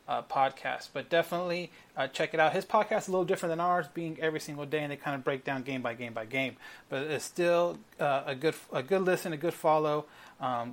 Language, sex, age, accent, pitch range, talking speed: English, male, 30-49, American, 145-175 Hz, 245 wpm